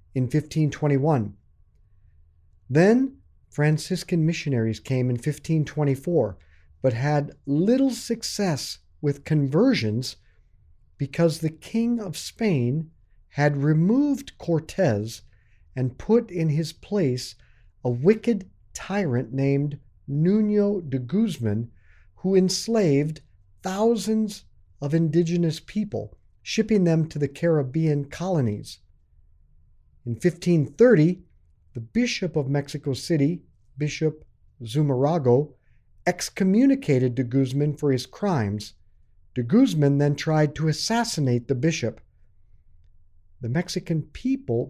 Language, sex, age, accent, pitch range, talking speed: English, male, 50-69, American, 105-170 Hz, 95 wpm